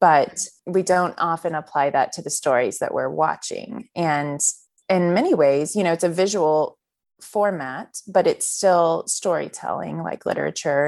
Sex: female